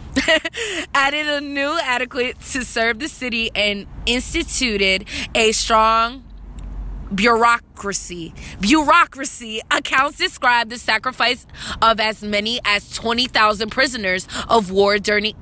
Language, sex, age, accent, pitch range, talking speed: English, female, 20-39, American, 205-270 Hz, 110 wpm